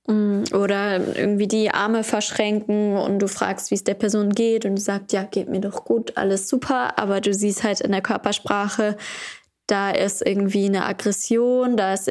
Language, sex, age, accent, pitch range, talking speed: German, female, 10-29, German, 205-225 Hz, 185 wpm